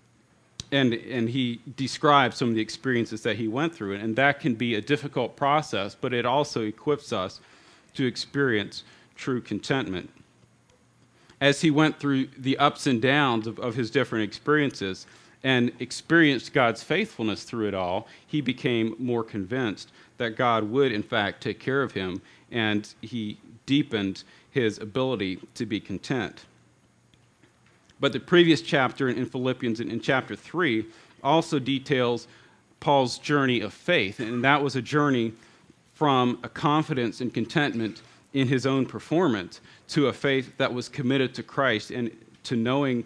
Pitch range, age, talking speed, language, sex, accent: 115-140 Hz, 40-59, 155 wpm, English, male, American